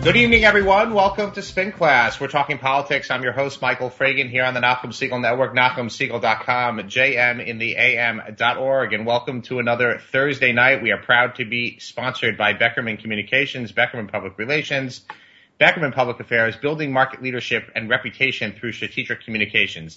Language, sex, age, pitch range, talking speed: English, male, 30-49, 115-140 Hz, 165 wpm